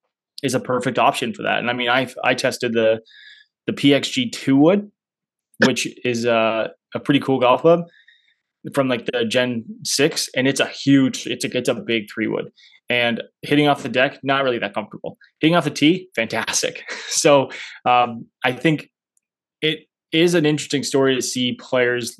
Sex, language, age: male, English, 20-39